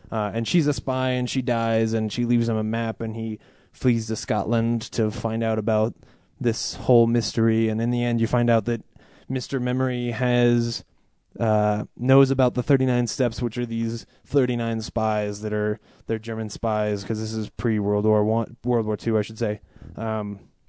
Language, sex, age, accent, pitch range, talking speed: English, male, 20-39, American, 110-130 Hz, 200 wpm